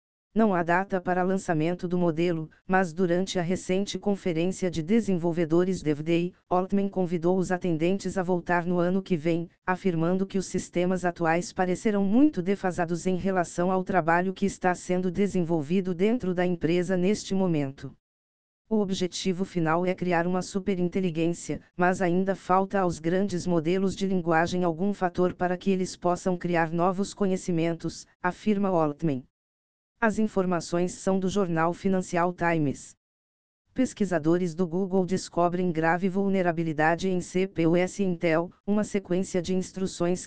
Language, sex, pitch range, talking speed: Portuguese, female, 170-190 Hz, 140 wpm